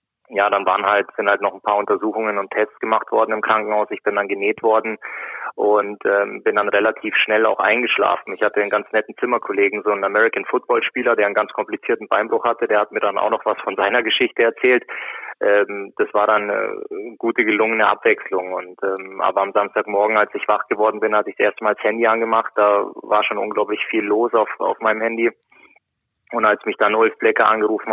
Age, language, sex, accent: 20-39, German, male, German